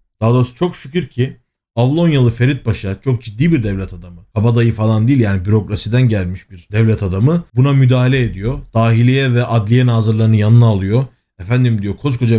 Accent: native